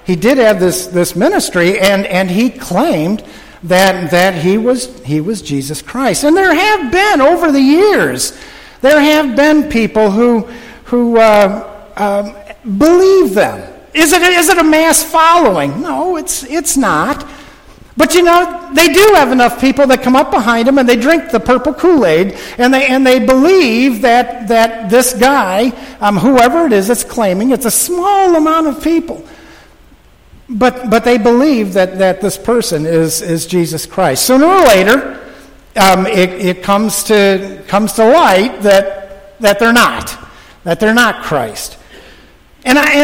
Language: English